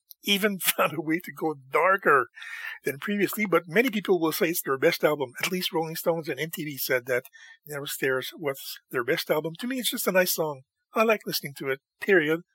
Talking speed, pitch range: 215 wpm, 145-210 Hz